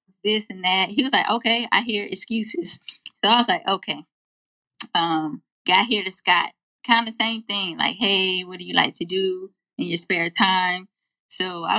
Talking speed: 195 wpm